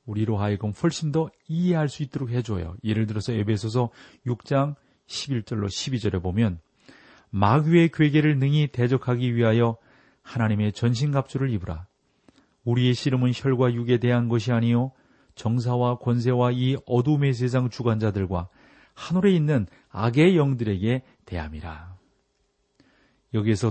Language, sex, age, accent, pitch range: Korean, male, 40-59, native, 110-135 Hz